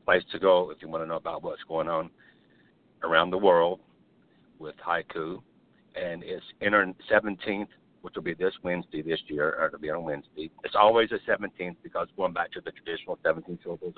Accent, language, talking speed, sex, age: American, English, 190 wpm, male, 60-79